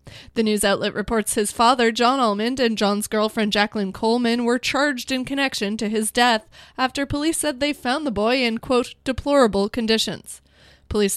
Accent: American